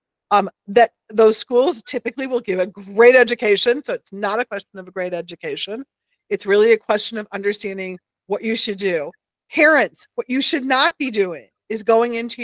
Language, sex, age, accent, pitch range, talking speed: English, female, 50-69, American, 185-235 Hz, 190 wpm